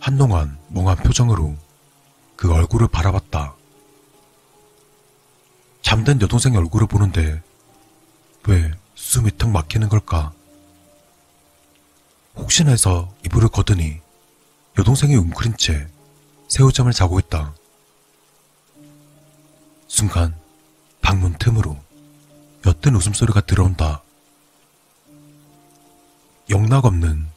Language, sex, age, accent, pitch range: Korean, male, 40-59, native, 85-140 Hz